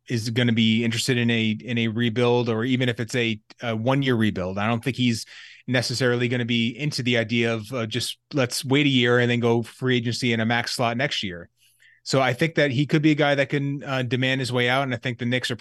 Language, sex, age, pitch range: English, male, 30-49, 115-130 Hz